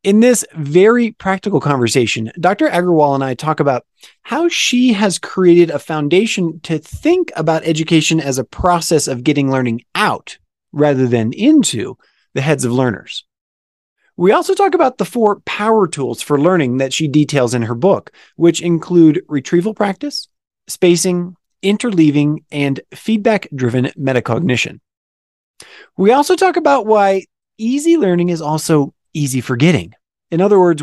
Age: 30-49